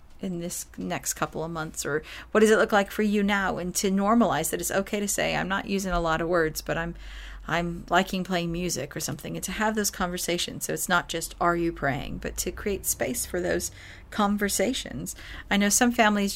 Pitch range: 175-235 Hz